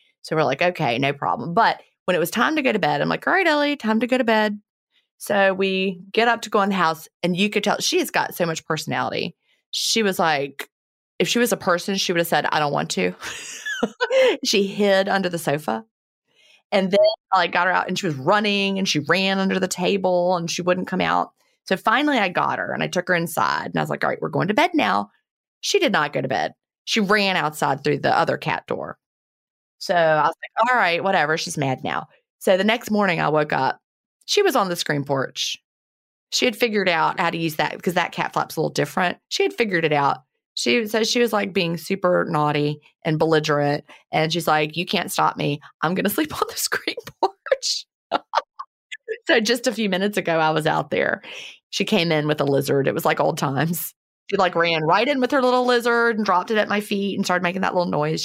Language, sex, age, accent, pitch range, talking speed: English, female, 30-49, American, 160-220 Hz, 235 wpm